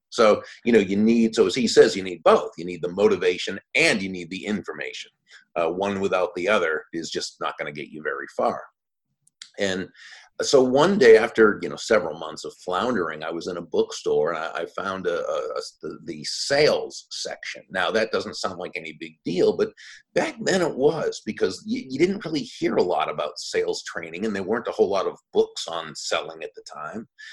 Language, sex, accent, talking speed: English, male, American, 215 wpm